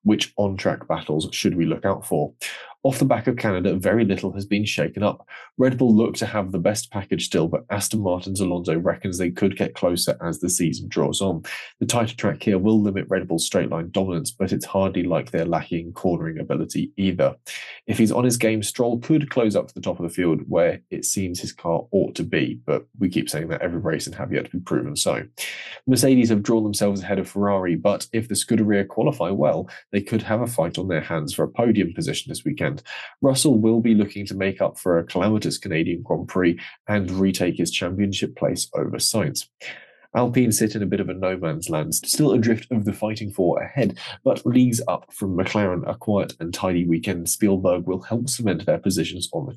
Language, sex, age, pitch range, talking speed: English, male, 20-39, 90-115 Hz, 220 wpm